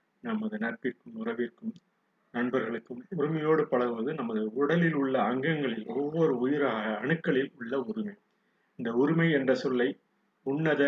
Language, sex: Tamil, male